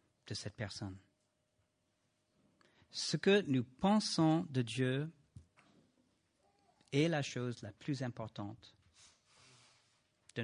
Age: 50-69